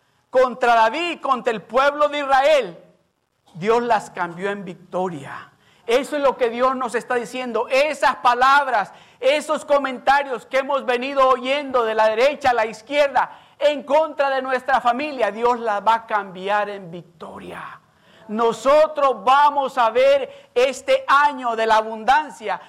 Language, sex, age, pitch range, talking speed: Spanish, male, 50-69, 170-255 Hz, 145 wpm